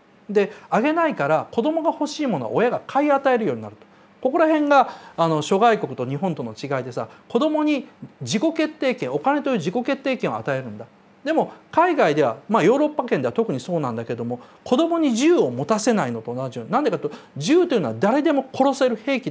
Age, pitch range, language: 40-59, 175-290 Hz, Japanese